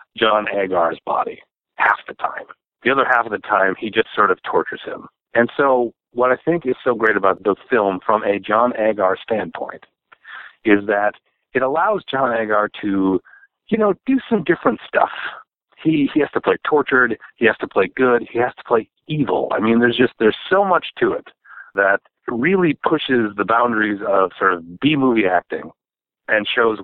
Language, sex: English, male